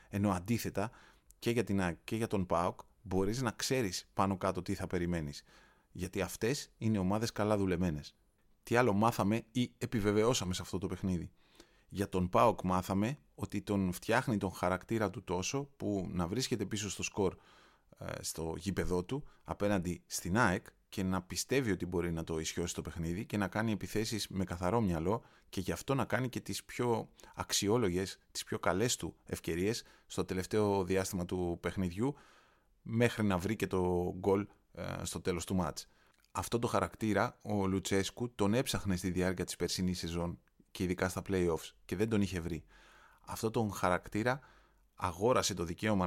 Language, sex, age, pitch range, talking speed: Greek, male, 30-49, 90-105 Hz, 165 wpm